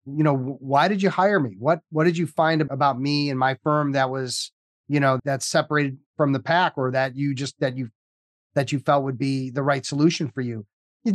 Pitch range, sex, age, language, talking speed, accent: 135-160 Hz, male, 30-49, English, 230 wpm, American